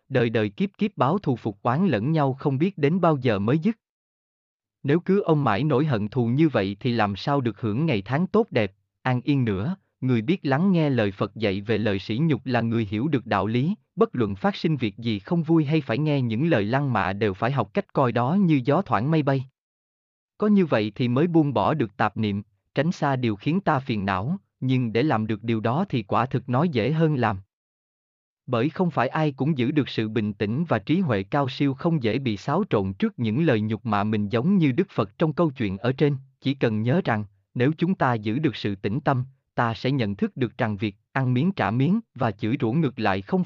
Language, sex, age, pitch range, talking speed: Vietnamese, male, 20-39, 110-155 Hz, 240 wpm